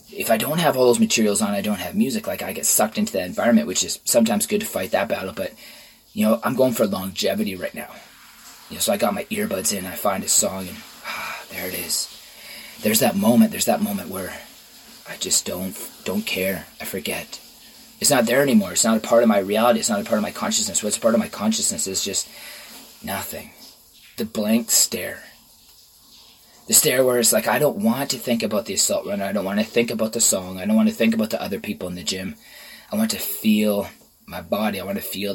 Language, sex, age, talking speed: English, male, 20-39, 235 wpm